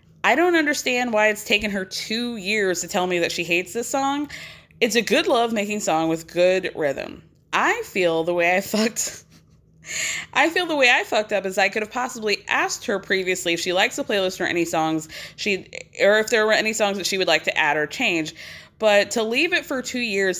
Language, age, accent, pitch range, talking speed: English, 20-39, American, 175-240 Hz, 225 wpm